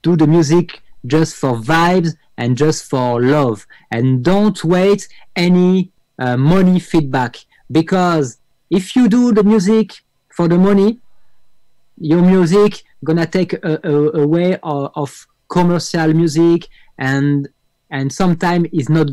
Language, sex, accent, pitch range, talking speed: Spanish, male, French, 140-185 Hz, 130 wpm